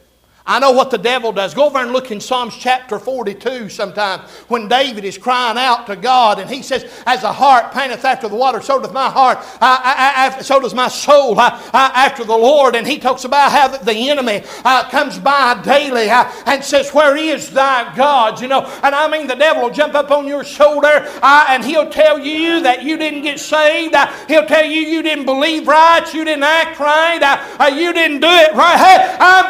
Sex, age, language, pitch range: male, 60-79, English, 215-295 Hz